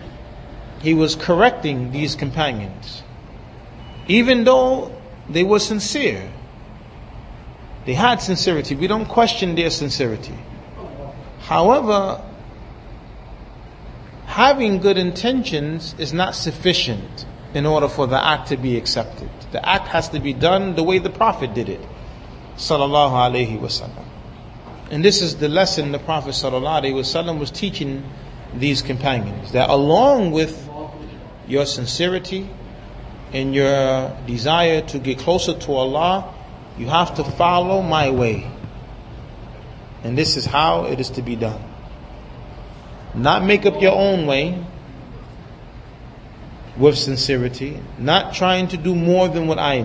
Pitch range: 125-175 Hz